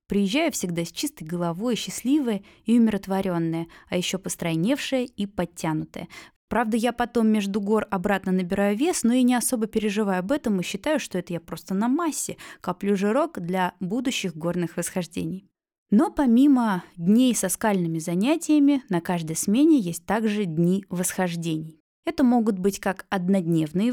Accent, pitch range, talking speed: native, 180-240 Hz, 150 wpm